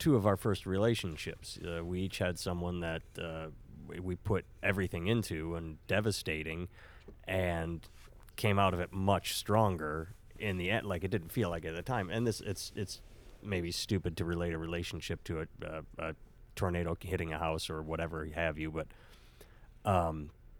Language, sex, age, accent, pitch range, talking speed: English, male, 30-49, American, 80-100 Hz, 180 wpm